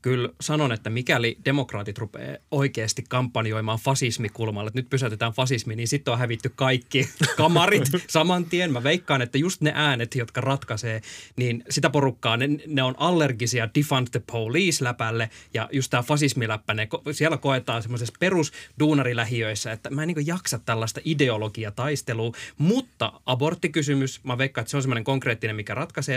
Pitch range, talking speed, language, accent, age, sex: 115-145 Hz, 155 wpm, Finnish, native, 20-39, male